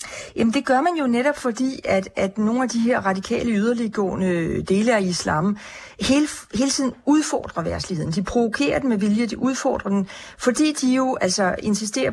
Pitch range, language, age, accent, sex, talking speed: 195-250 Hz, Danish, 40-59, native, female, 180 wpm